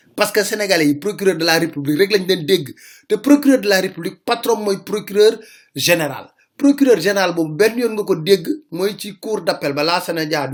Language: French